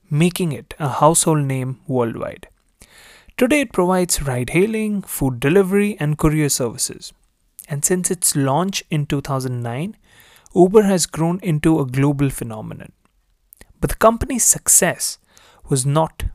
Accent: Indian